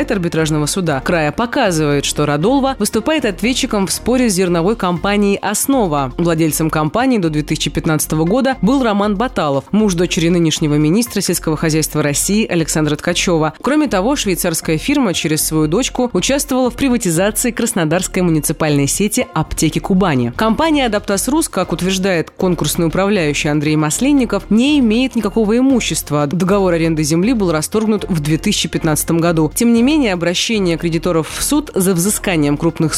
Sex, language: female, Russian